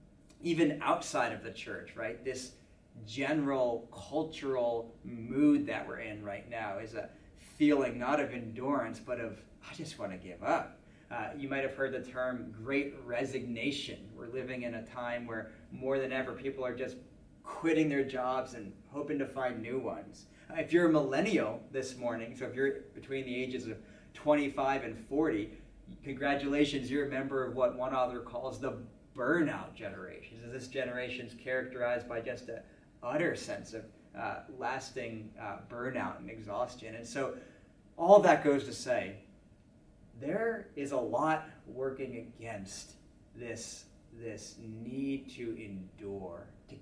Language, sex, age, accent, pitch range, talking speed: English, male, 30-49, American, 110-140 Hz, 155 wpm